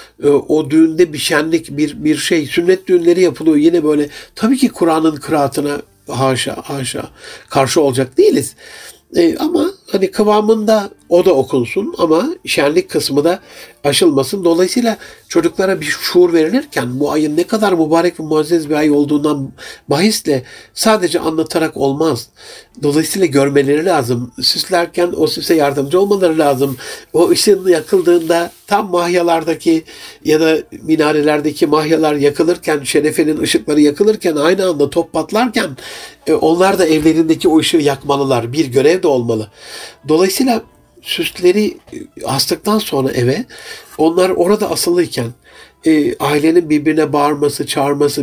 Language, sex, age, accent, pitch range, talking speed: Turkish, male, 60-79, native, 145-195 Hz, 125 wpm